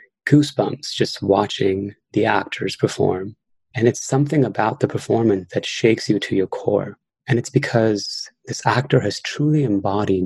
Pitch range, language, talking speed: 100-130 Hz, English, 150 wpm